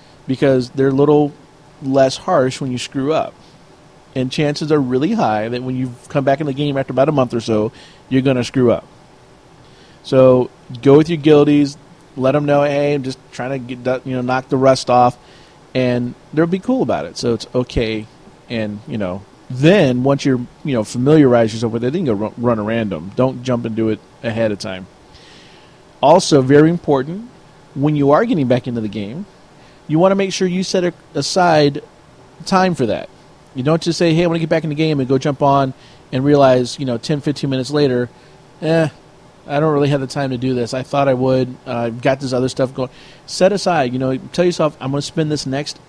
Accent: American